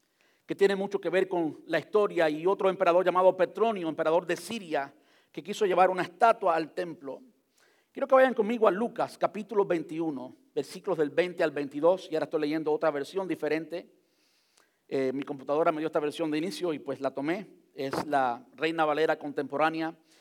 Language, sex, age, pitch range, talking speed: Spanish, male, 50-69, 155-225 Hz, 180 wpm